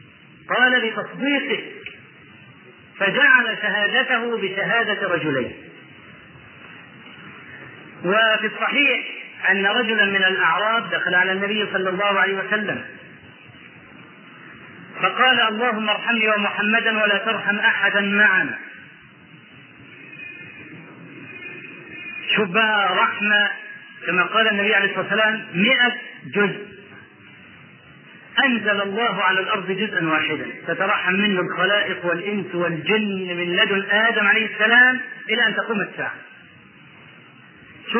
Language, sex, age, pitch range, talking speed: Arabic, male, 40-59, 195-235 Hz, 90 wpm